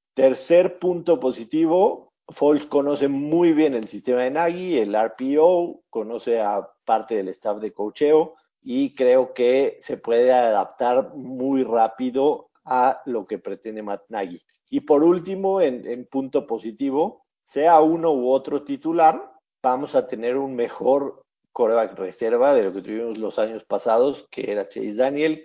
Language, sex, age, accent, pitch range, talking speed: Spanish, male, 50-69, Mexican, 120-165 Hz, 150 wpm